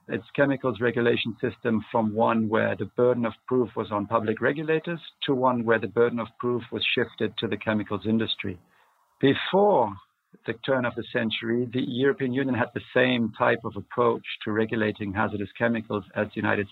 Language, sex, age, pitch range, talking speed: English, male, 50-69, 110-130 Hz, 180 wpm